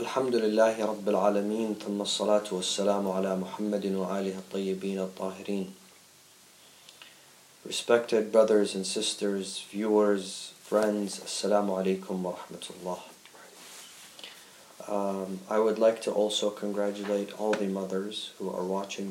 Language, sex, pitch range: English, male, 95-105 Hz